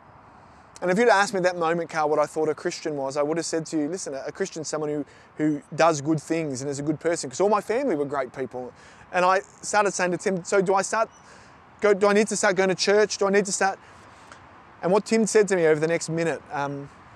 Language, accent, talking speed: English, Australian, 275 wpm